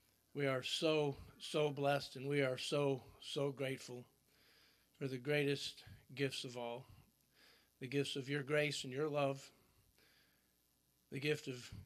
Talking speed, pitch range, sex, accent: 140 wpm, 125-150 Hz, male, American